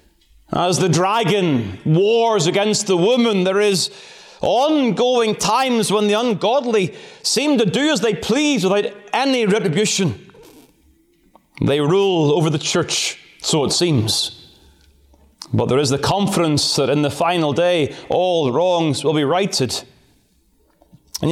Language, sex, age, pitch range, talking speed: English, male, 30-49, 140-195 Hz, 130 wpm